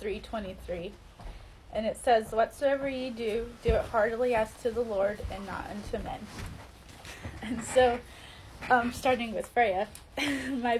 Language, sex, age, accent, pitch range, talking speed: English, female, 10-29, American, 195-245 Hz, 140 wpm